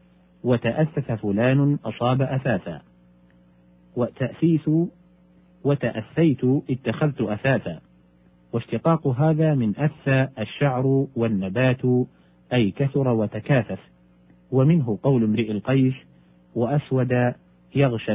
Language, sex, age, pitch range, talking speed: Arabic, male, 50-69, 95-135 Hz, 75 wpm